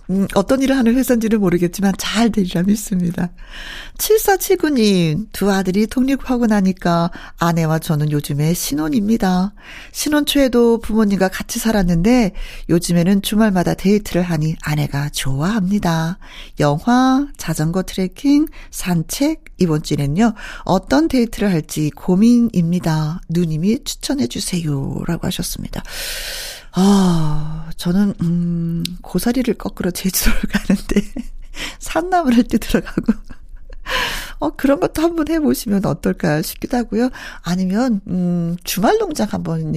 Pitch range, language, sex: 170-240 Hz, Korean, female